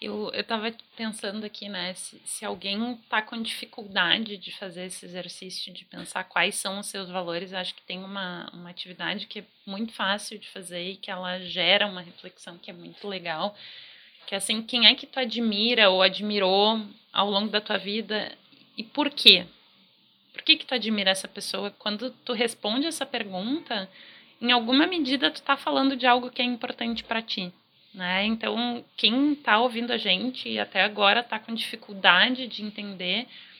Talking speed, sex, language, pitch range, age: 185 wpm, female, Portuguese, 195-245 Hz, 20-39